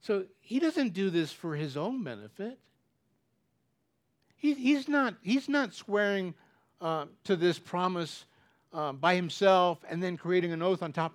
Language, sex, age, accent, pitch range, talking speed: English, male, 60-79, American, 150-210 Hz, 145 wpm